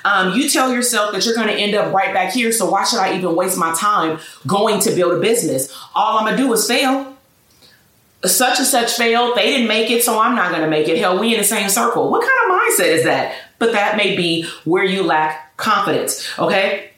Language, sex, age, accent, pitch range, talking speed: English, female, 30-49, American, 185-240 Hz, 235 wpm